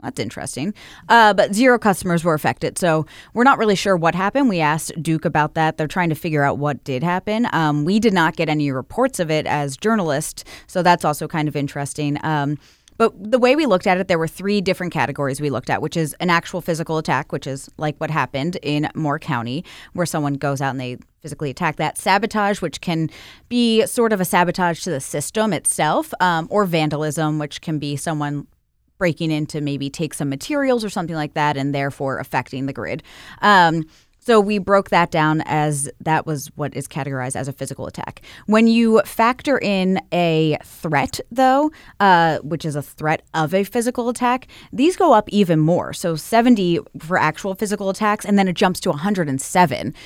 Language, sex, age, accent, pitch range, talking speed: English, female, 20-39, American, 145-195 Hz, 200 wpm